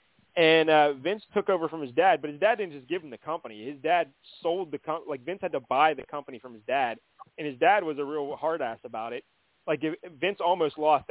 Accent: American